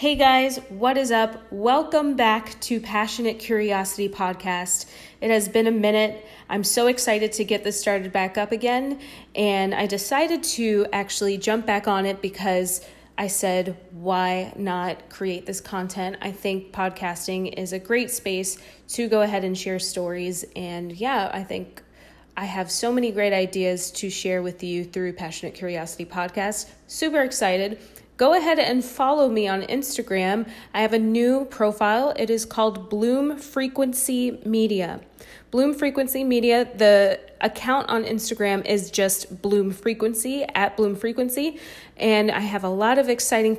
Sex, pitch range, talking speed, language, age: female, 190-235 Hz, 160 wpm, English, 20-39